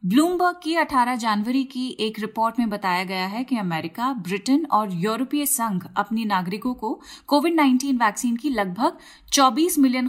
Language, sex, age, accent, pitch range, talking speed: Hindi, female, 30-49, native, 210-280 Hz, 160 wpm